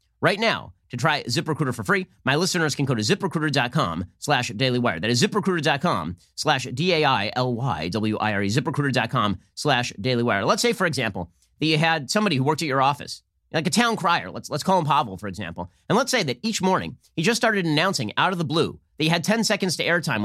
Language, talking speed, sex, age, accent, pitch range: English, 200 wpm, male, 30-49, American, 120-190 Hz